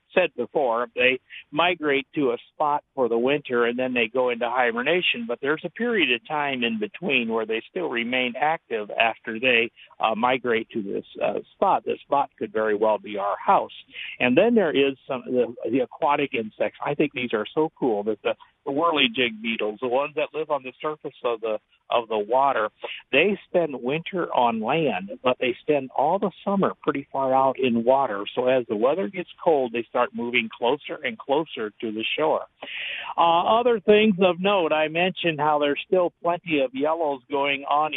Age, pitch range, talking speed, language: 60-79, 125-160 Hz, 195 wpm, English